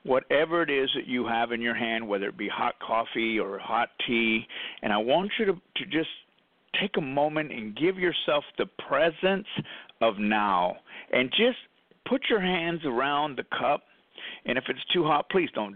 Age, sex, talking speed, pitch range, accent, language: 50-69, male, 185 wpm, 120-185 Hz, American, English